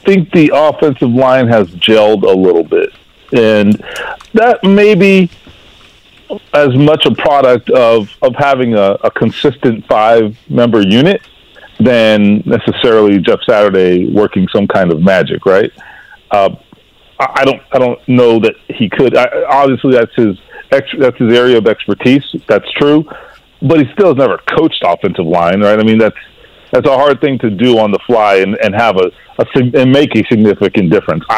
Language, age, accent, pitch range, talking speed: English, 40-59, American, 110-145 Hz, 165 wpm